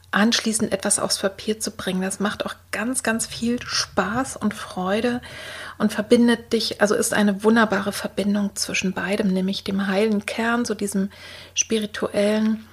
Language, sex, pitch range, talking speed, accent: German, female, 195-225 Hz, 150 wpm, German